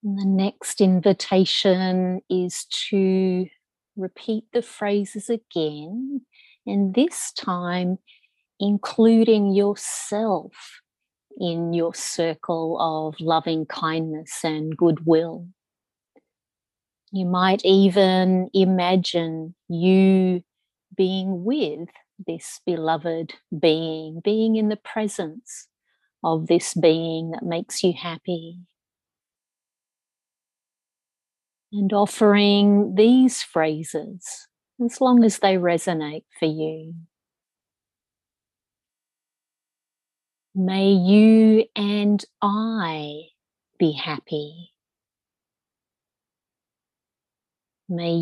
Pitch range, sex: 160-205 Hz, female